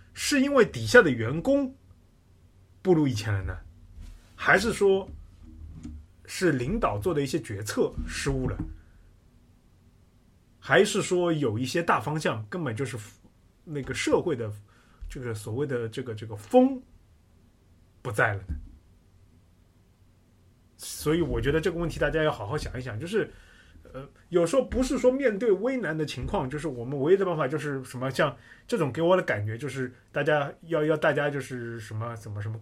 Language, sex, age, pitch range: Chinese, male, 30-49, 100-155 Hz